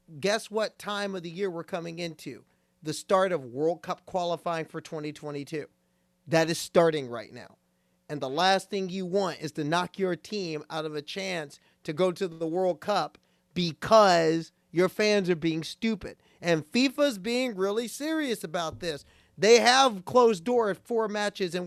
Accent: American